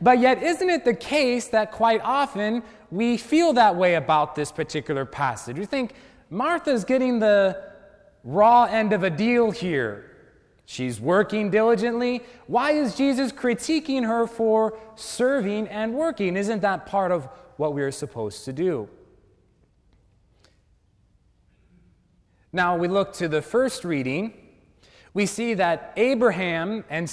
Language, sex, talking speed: English, male, 135 wpm